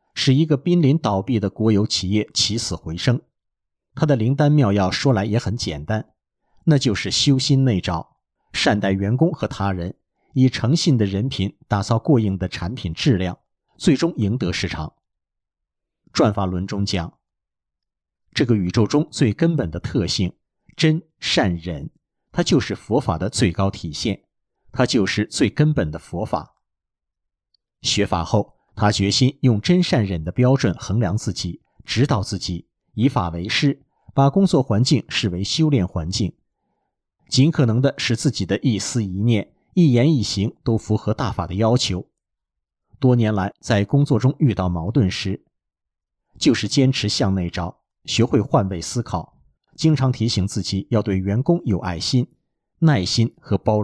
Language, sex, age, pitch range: Chinese, male, 50-69, 95-130 Hz